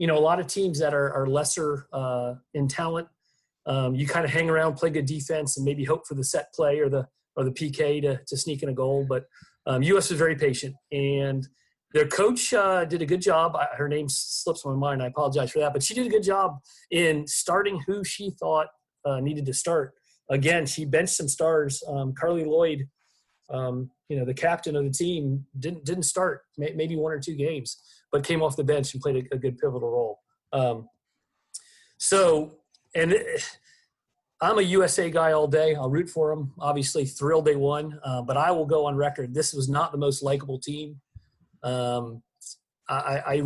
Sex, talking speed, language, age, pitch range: male, 205 wpm, English, 40-59, 135-165 Hz